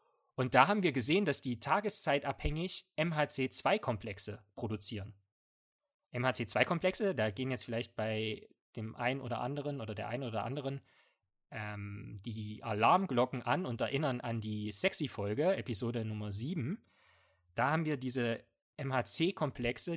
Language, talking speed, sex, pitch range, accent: German, 125 wpm, male, 110-150 Hz, German